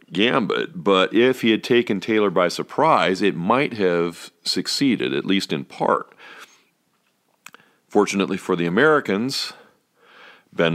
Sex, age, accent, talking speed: male, 40-59, American, 125 wpm